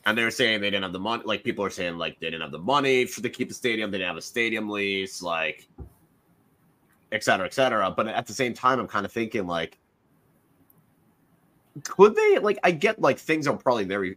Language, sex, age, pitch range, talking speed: English, male, 30-49, 95-140 Hz, 215 wpm